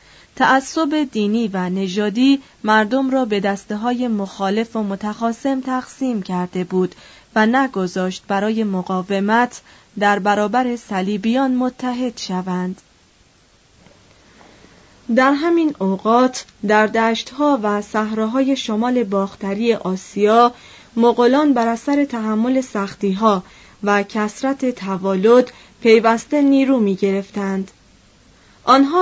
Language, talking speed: Persian, 100 wpm